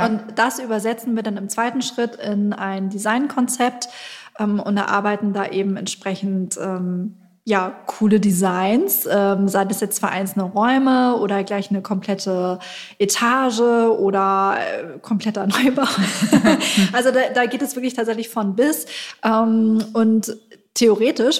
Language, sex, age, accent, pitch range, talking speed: German, female, 20-39, German, 195-225 Hz, 140 wpm